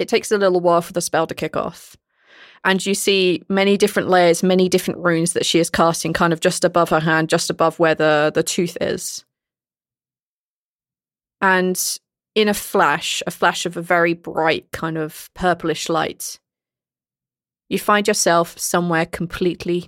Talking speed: 170 wpm